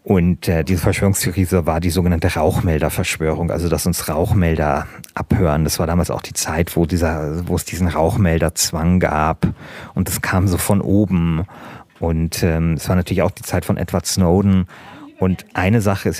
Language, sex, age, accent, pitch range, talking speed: German, male, 40-59, German, 90-105 Hz, 175 wpm